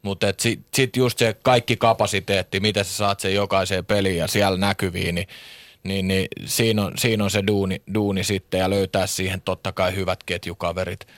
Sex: male